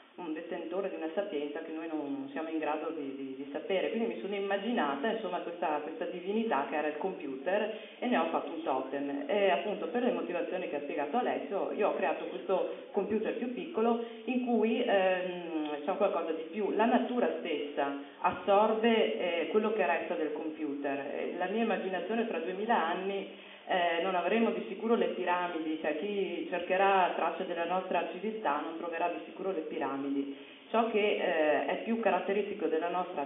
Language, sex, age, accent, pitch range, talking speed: Italian, female, 40-59, native, 150-205 Hz, 185 wpm